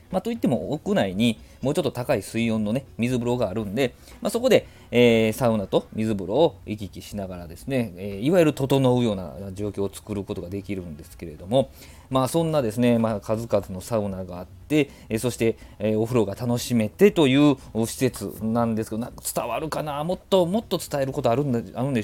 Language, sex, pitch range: Japanese, male, 100-135 Hz